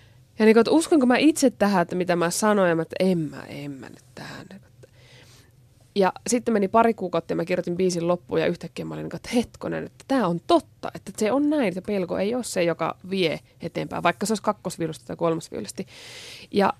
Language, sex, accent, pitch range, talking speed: Finnish, female, native, 150-205 Hz, 210 wpm